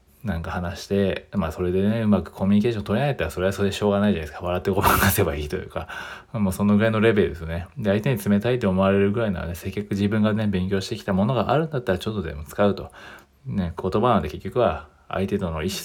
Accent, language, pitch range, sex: native, Japanese, 90-110 Hz, male